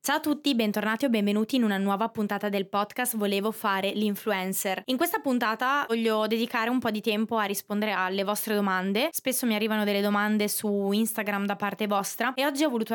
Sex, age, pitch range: female, 20-39, 195-230 Hz